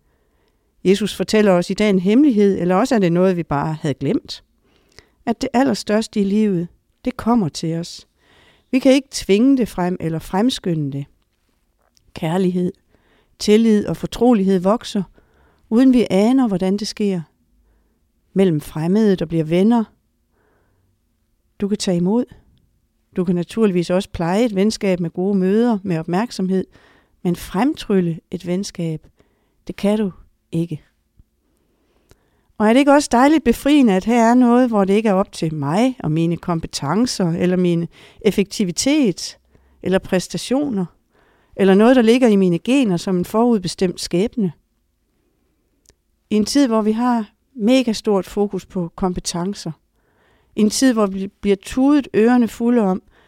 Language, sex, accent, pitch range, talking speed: English, female, Danish, 175-225 Hz, 150 wpm